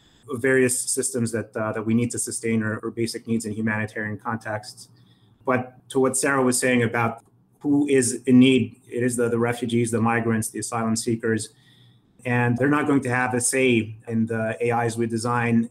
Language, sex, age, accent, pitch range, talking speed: English, male, 30-49, American, 115-130 Hz, 190 wpm